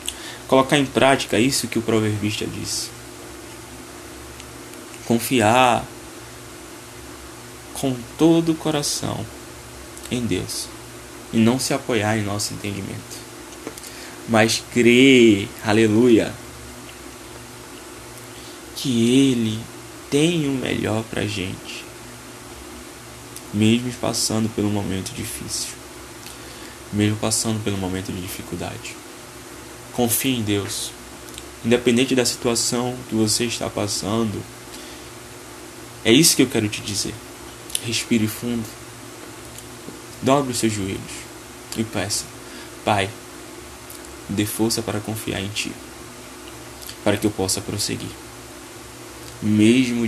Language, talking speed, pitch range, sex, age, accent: Portuguese, 95 wpm, 105-120 Hz, male, 10-29, Brazilian